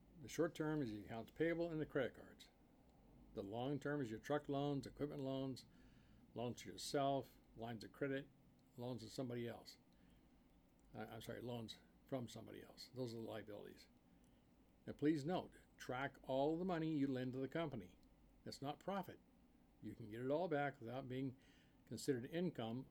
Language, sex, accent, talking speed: English, male, American, 175 wpm